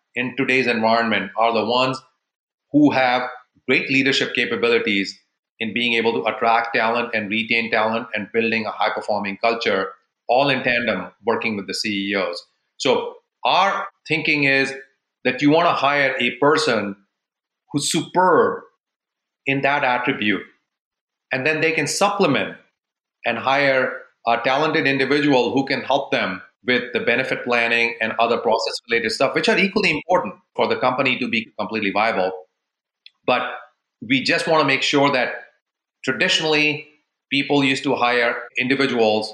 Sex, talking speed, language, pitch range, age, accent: male, 145 wpm, English, 110-140 Hz, 30-49, Indian